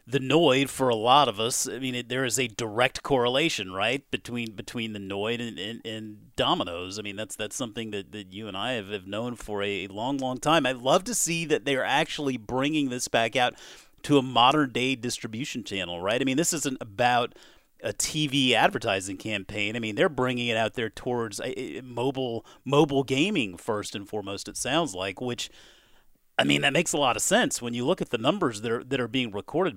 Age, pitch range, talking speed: 40-59, 105-130 Hz, 220 wpm